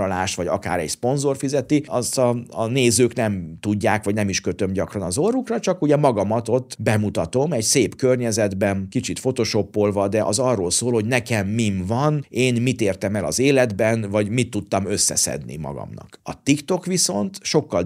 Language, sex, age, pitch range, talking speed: Hungarian, male, 50-69, 100-135 Hz, 170 wpm